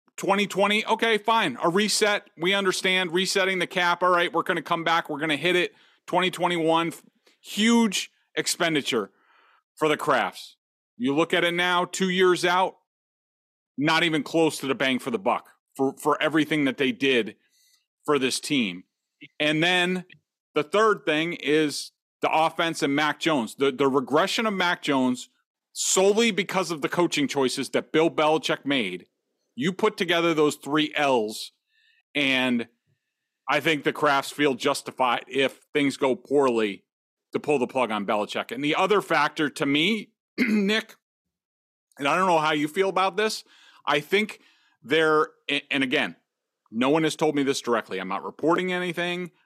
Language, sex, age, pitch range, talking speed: English, male, 40-59, 140-185 Hz, 165 wpm